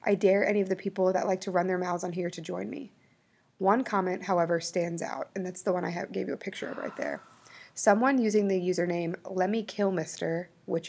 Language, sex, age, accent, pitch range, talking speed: English, female, 20-39, American, 175-195 Hz, 235 wpm